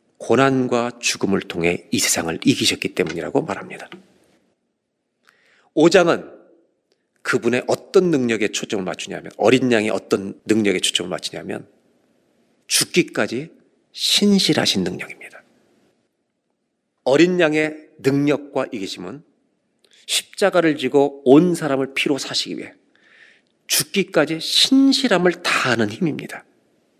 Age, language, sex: 40-59, Korean, male